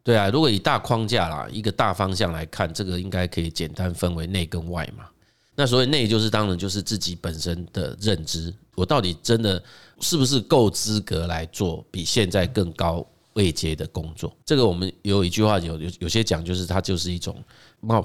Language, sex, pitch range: Chinese, male, 85-115 Hz